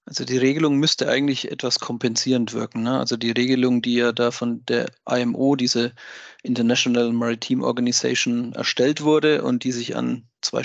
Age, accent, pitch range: 40-59, German, 120-140 Hz